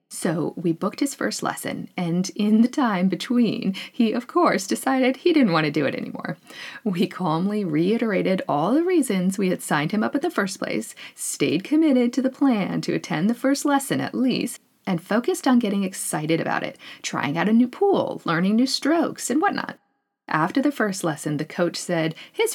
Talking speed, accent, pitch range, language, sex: 195 wpm, American, 185-265 Hz, English, female